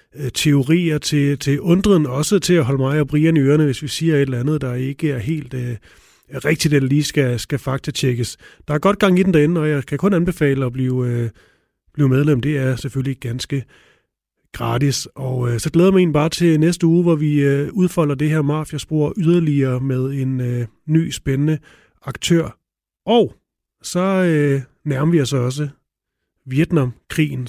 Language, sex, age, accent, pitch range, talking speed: Danish, male, 30-49, native, 130-160 Hz, 185 wpm